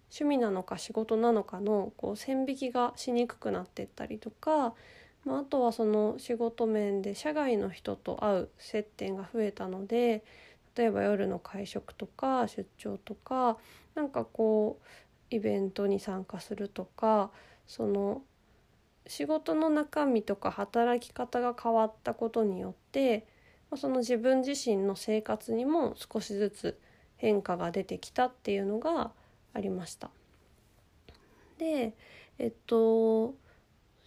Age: 20-39